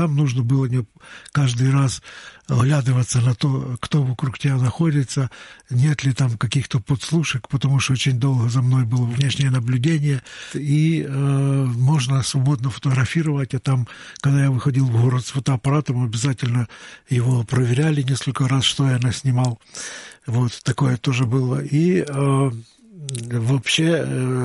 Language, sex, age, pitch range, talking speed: Russian, male, 60-79, 125-140 Hz, 135 wpm